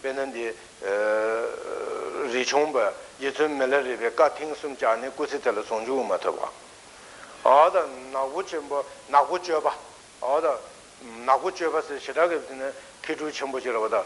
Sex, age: male, 60-79